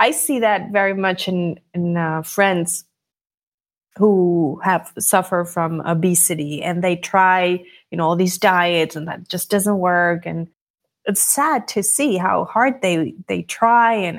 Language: English